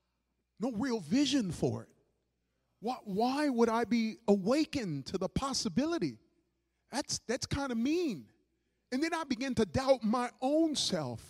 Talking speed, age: 150 wpm, 30-49